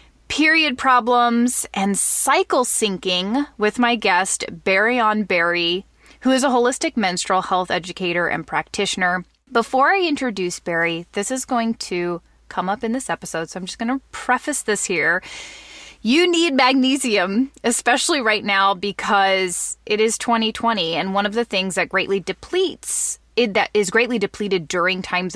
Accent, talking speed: American, 155 wpm